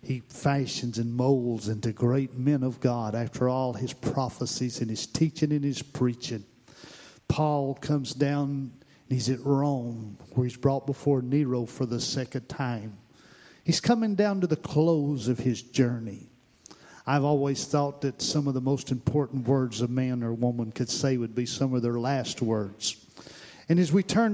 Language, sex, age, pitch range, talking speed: English, male, 50-69, 125-155 Hz, 175 wpm